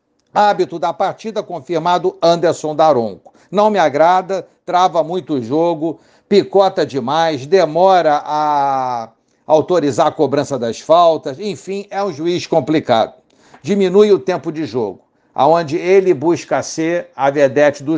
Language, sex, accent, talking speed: Portuguese, male, Brazilian, 130 wpm